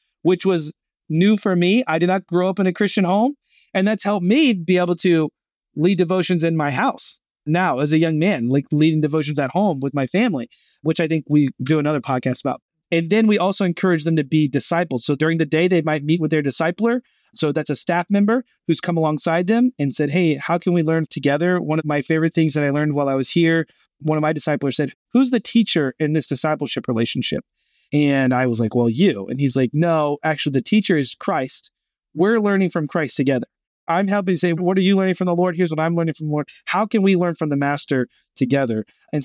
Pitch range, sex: 150-185 Hz, male